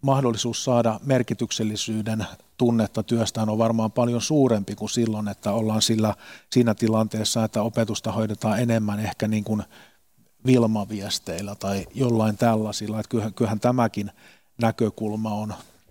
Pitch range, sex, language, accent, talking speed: 105-120 Hz, male, Finnish, native, 120 wpm